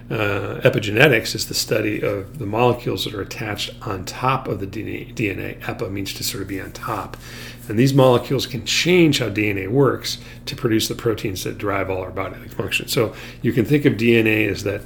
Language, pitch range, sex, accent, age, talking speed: English, 105-125 Hz, male, American, 40-59, 210 wpm